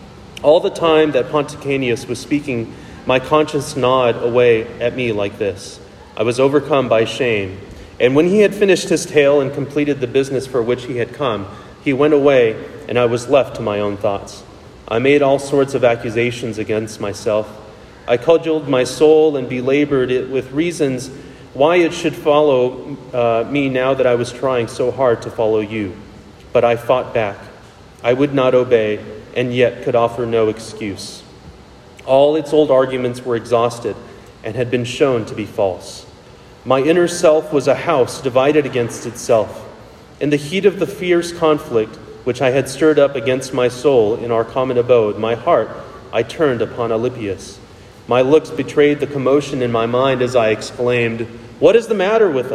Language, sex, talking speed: English, male, 180 wpm